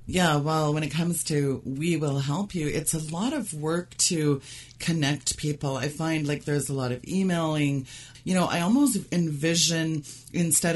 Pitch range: 130-160 Hz